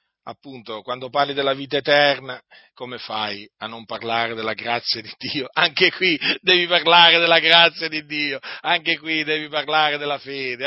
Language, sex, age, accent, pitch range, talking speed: Italian, male, 40-59, native, 140-180 Hz, 165 wpm